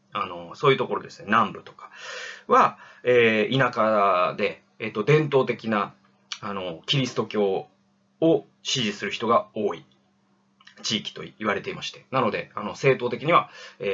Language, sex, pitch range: Japanese, male, 120-195 Hz